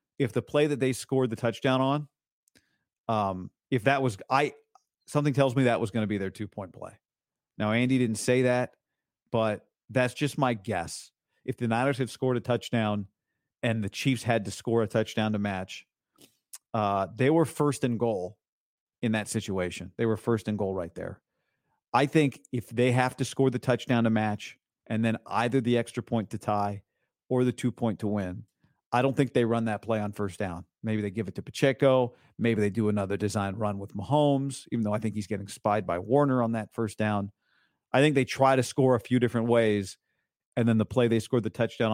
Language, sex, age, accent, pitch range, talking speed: English, male, 40-59, American, 105-130 Hz, 210 wpm